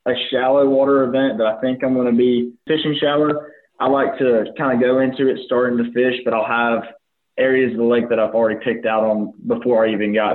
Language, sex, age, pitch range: English, male, 20-39, 110-130 Hz